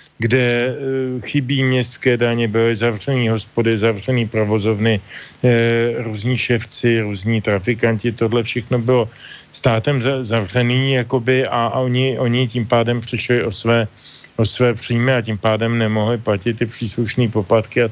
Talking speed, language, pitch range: 140 wpm, Slovak, 100-120 Hz